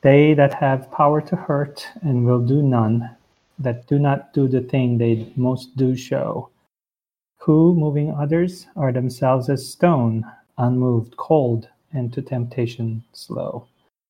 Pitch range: 120-140 Hz